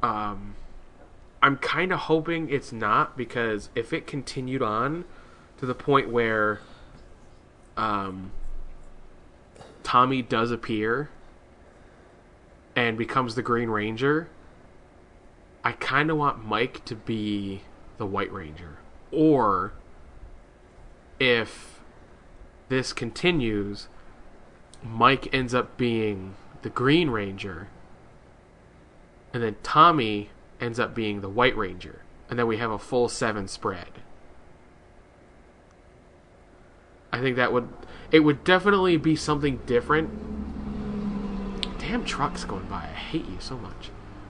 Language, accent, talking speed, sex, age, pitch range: English, American, 110 wpm, male, 20-39, 100-135 Hz